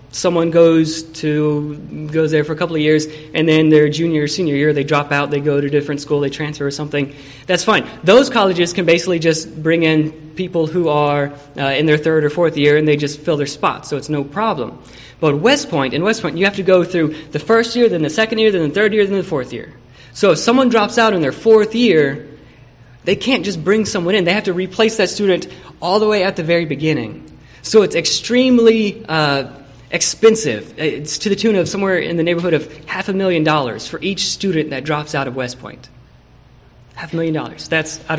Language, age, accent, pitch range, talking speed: English, 20-39, American, 145-195 Hz, 230 wpm